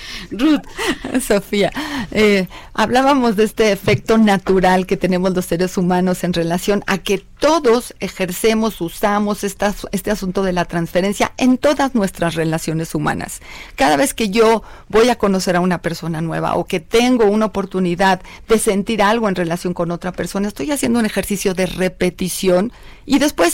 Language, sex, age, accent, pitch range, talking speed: Spanish, female, 40-59, Mexican, 175-220 Hz, 160 wpm